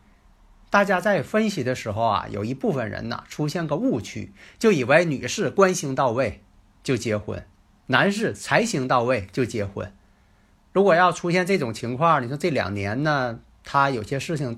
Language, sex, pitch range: Chinese, male, 105-155 Hz